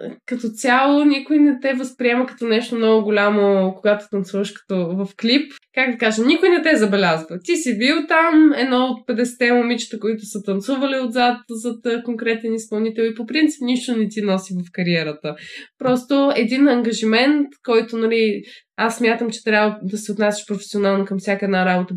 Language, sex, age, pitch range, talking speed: Bulgarian, female, 20-39, 200-245 Hz, 175 wpm